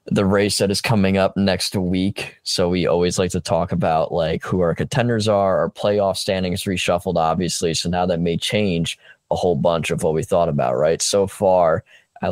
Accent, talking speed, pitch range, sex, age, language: American, 205 wpm, 85-100 Hz, male, 10-29, English